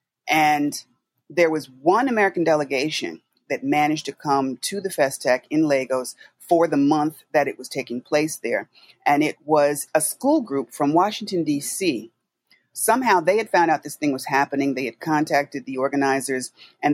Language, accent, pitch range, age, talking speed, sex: English, American, 135-165 Hz, 30-49, 170 wpm, female